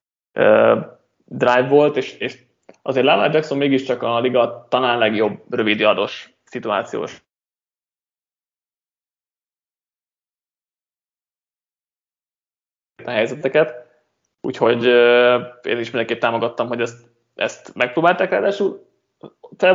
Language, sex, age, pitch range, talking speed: Hungarian, male, 20-39, 120-150 Hz, 90 wpm